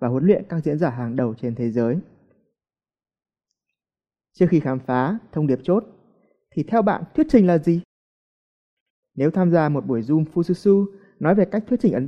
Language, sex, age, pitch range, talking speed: Vietnamese, male, 20-39, 135-195 Hz, 190 wpm